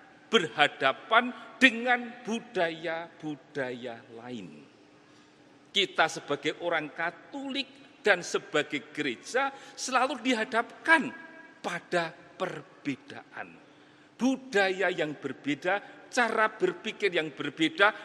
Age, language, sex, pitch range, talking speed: 50-69, Indonesian, male, 160-255 Hz, 75 wpm